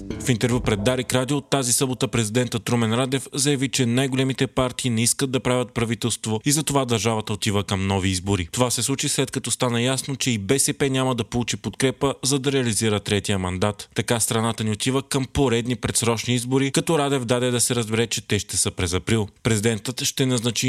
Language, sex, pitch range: Bulgarian, male, 110-135 Hz